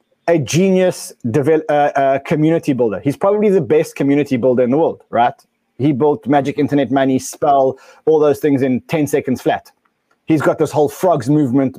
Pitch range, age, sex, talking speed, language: 135-170 Hz, 20-39, male, 175 wpm, English